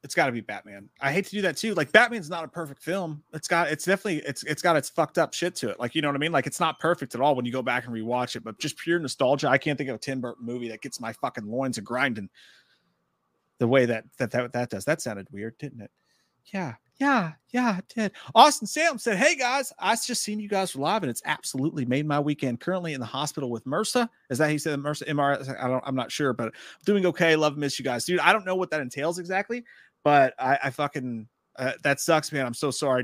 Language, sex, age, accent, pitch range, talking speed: English, male, 30-49, American, 125-160 Hz, 265 wpm